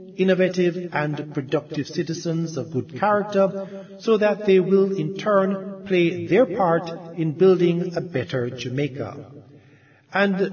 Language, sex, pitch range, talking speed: English, male, 145-190 Hz, 125 wpm